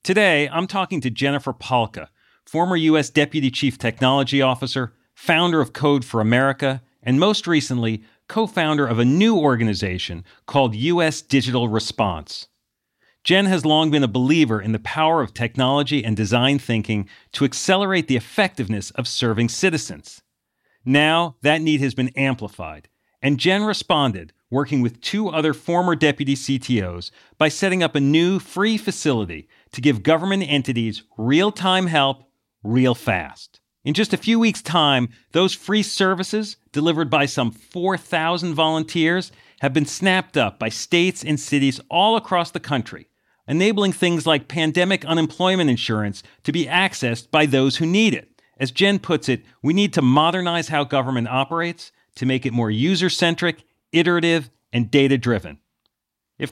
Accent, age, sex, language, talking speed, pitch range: American, 40-59, male, English, 150 wpm, 125-170 Hz